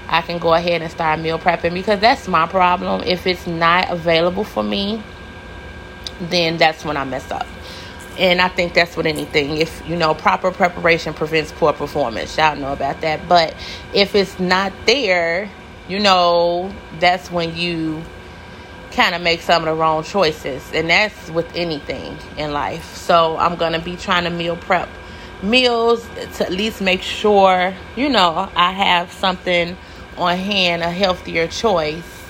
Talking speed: 170 wpm